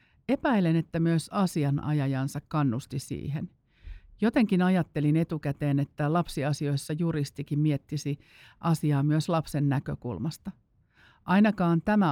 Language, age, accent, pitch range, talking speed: Finnish, 50-69, native, 140-165 Hz, 95 wpm